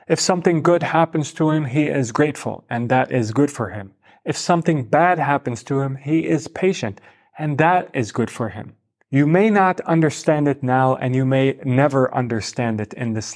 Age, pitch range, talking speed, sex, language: 30-49, 135-165 Hz, 200 wpm, male, English